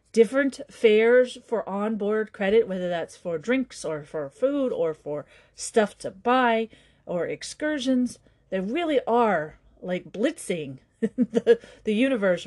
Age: 40-59